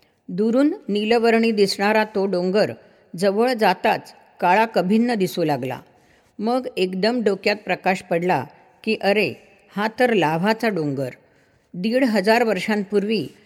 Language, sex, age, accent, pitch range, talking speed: Marathi, female, 50-69, native, 185-220 Hz, 110 wpm